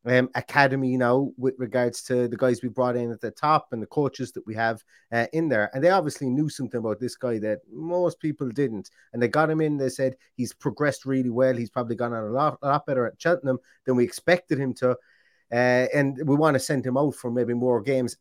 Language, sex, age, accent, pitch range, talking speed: English, male, 30-49, British, 120-150 Hz, 245 wpm